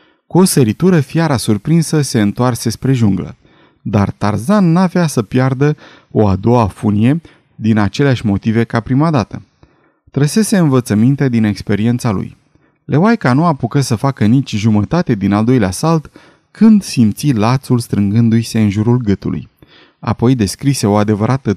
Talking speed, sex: 140 wpm, male